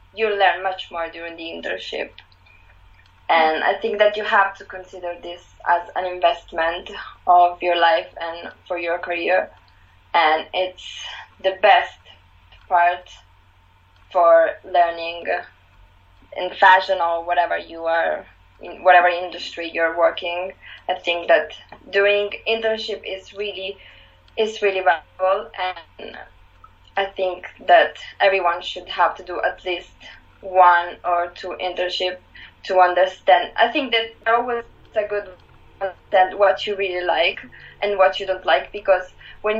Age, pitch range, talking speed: 20-39, 170-200 Hz, 140 wpm